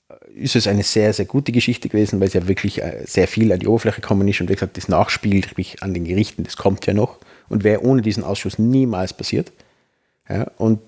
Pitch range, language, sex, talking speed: 95-115 Hz, German, male, 225 wpm